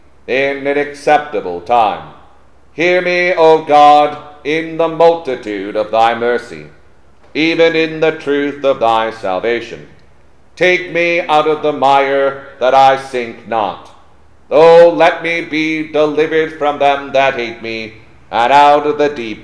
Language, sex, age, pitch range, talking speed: English, male, 40-59, 120-155 Hz, 140 wpm